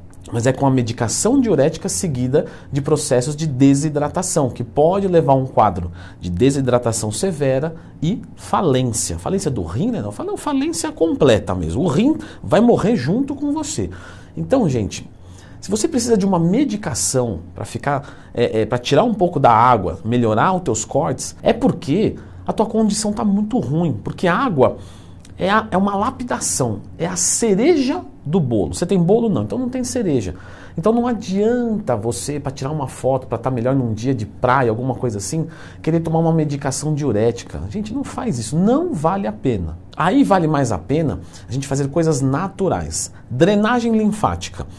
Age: 40-59